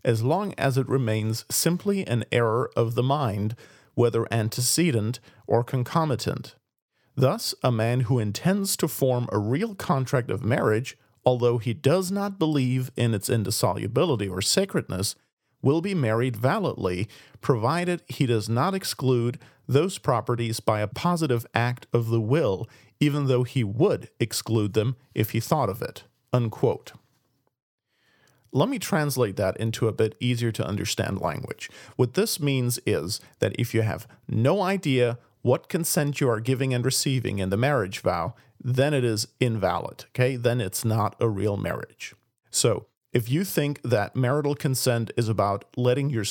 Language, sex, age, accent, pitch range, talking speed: English, male, 40-59, American, 115-145 Hz, 155 wpm